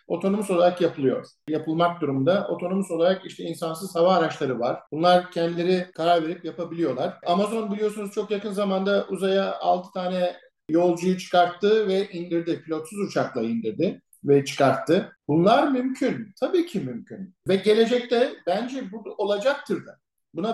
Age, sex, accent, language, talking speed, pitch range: 50-69, male, native, Turkish, 135 wpm, 175-215 Hz